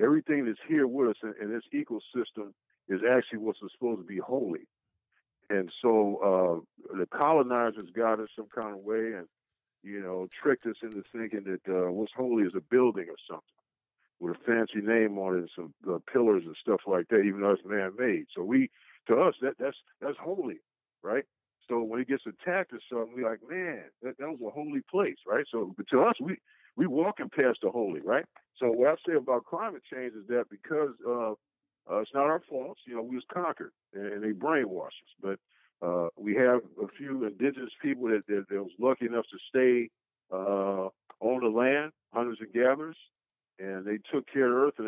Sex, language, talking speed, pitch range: male, English, 205 wpm, 105-130 Hz